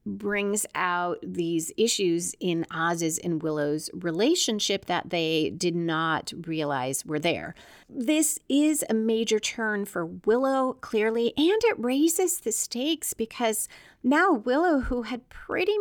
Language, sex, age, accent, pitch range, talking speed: English, female, 30-49, American, 185-255 Hz, 135 wpm